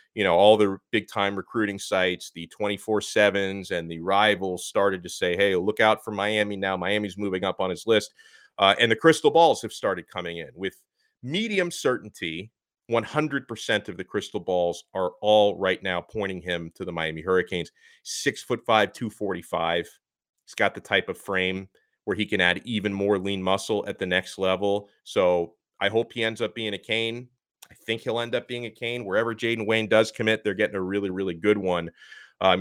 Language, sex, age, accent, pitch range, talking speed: English, male, 30-49, American, 95-115 Hz, 205 wpm